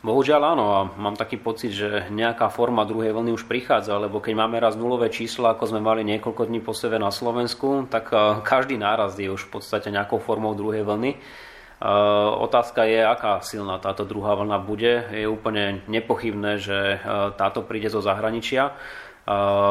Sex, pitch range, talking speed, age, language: male, 105-115 Hz, 165 wpm, 20-39, Slovak